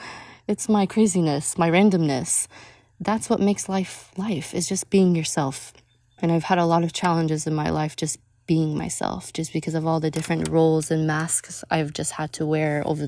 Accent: American